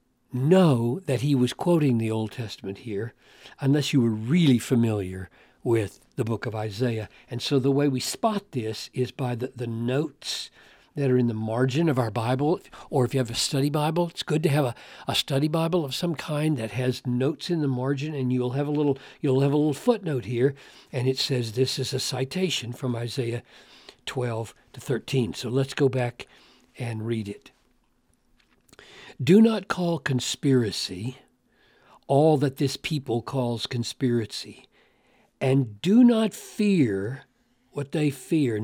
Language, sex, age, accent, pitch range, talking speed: English, male, 60-79, American, 120-150 Hz, 170 wpm